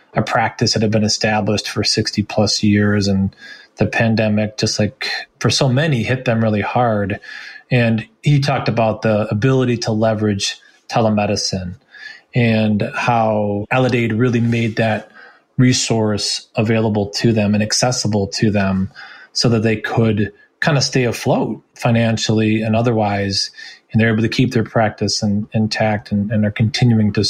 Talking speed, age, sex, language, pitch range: 150 wpm, 30-49, male, English, 105-120 Hz